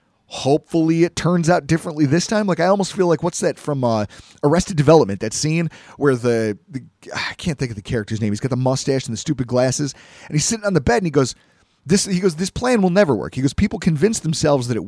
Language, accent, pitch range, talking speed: English, American, 125-170 Hz, 250 wpm